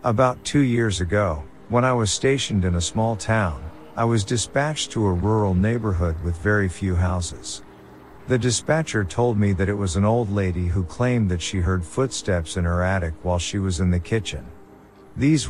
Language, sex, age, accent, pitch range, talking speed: English, male, 50-69, American, 90-115 Hz, 190 wpm